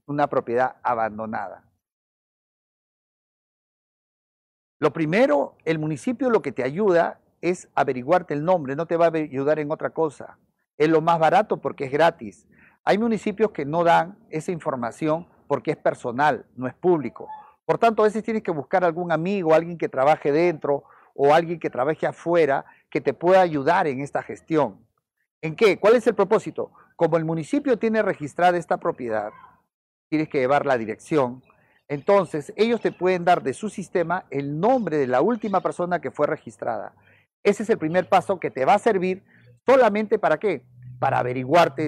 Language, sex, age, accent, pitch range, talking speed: Spanish, male, 50-69, Mexican, 140-185 Hz, 170 wpm